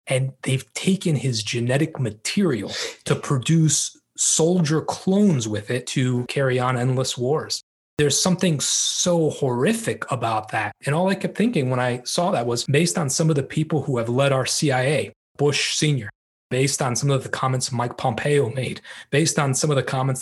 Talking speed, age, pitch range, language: 180 wpm, 30-49, 125-155 Hz, English